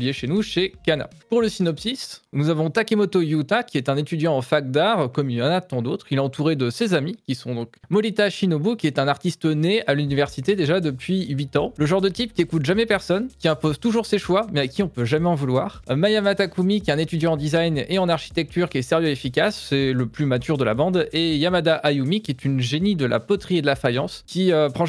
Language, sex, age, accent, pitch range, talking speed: French, male, 20-39, French, 140-185 Hz, 260 wpm